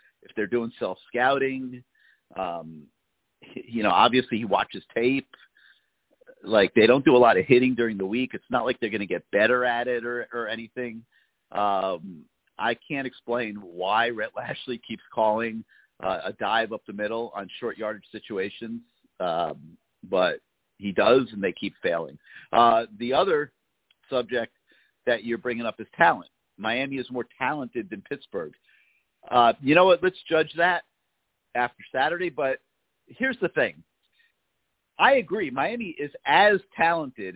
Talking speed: 155 wpm